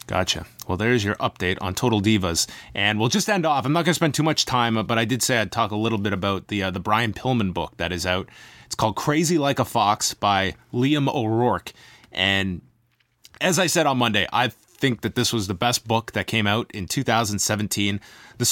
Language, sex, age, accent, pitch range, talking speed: English, male, 30-49, American, 105-130 Hz, 225 wpm